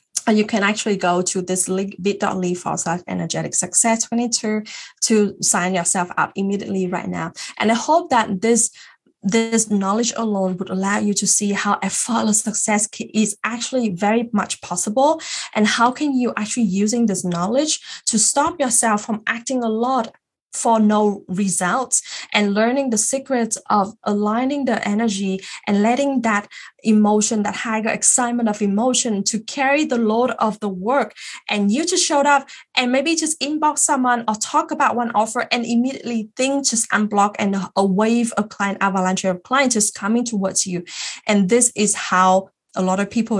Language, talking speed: English, 170 wpm